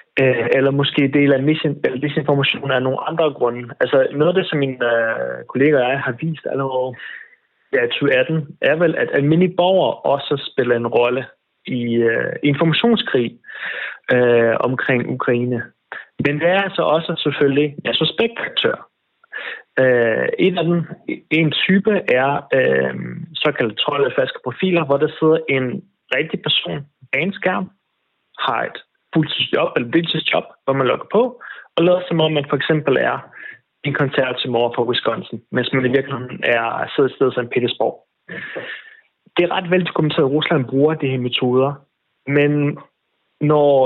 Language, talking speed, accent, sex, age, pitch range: Danish, 155 wpm, native, male, 30-49, 130-170 Hz